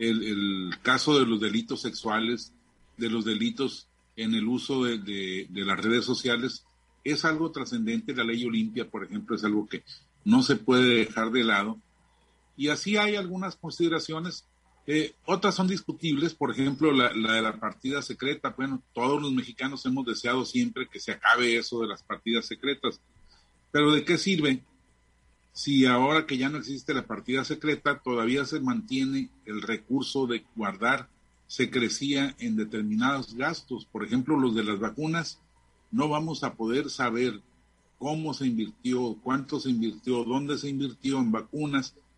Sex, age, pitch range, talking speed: male, 40-59, 110-145 Hz, 165 wpm